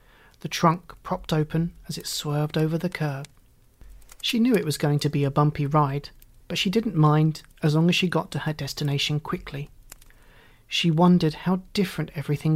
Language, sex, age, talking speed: English, male, 30-49, 180 wpm